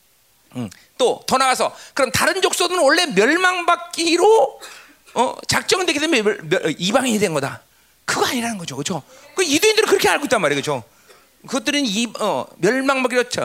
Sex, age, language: male, 40-59, Korean